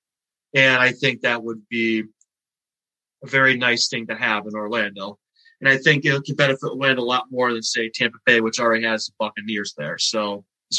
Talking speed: 200 wpm